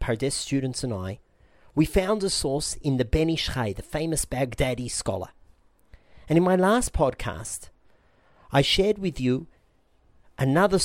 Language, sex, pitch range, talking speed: English, male, 100-160 Hz, 140 wpm